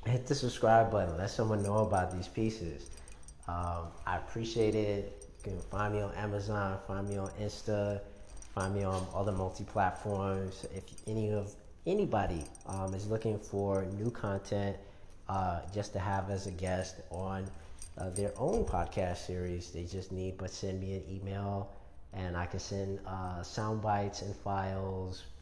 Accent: American